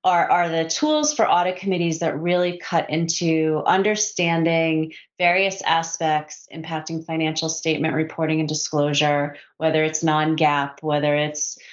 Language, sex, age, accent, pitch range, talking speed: English, female, 30-49, American, 150-170 Hz, 130 wpm